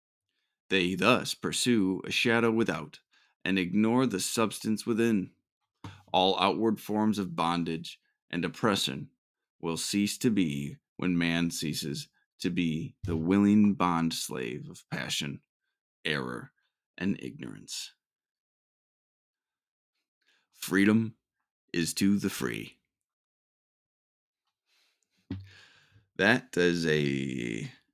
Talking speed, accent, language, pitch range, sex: 90 wpm, American, English, 85-115 Hz, male